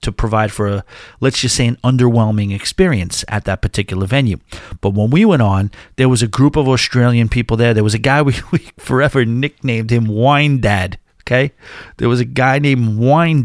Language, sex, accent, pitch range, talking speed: English, male, American, 110-145 Hz, 200 wpm